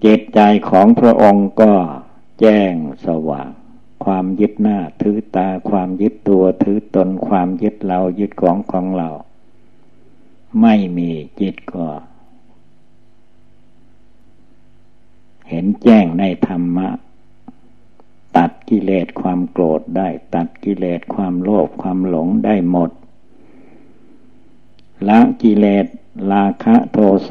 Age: 60-79